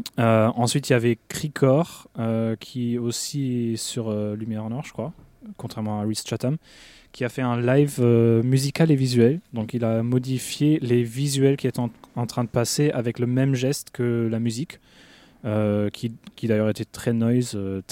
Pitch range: 110-125 Hz